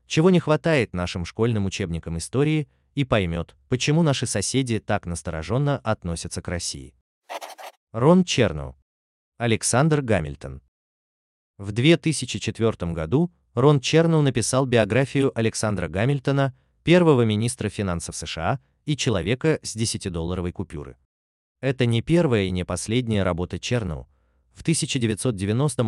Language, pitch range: Russian, 85-130 Hz